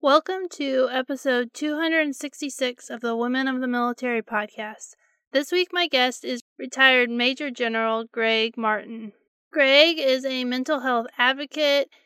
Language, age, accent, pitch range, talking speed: English, 20-39, American, 230-270 Hz, 135 wpm